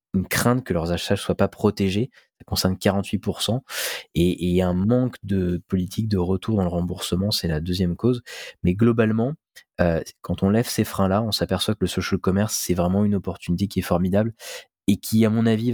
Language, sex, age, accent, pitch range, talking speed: French, male, 20-39, French, 90-115 Hz, 200 wpm